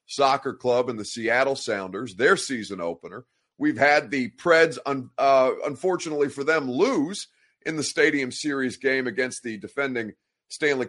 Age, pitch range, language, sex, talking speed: 30-49, 130-165 Hz, English, male, 155 wpm